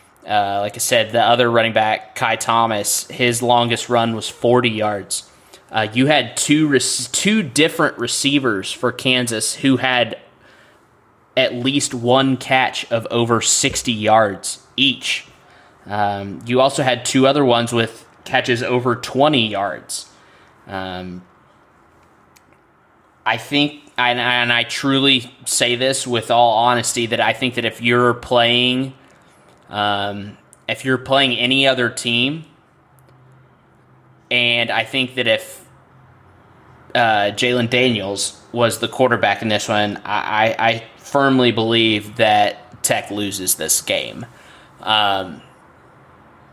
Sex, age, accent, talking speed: male, 20-39, American, 130 wpm